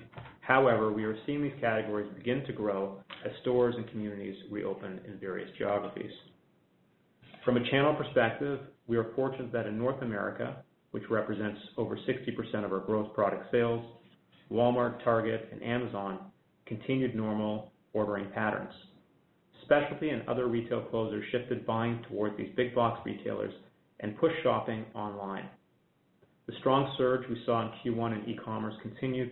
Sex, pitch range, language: male, 110-125 Hz, English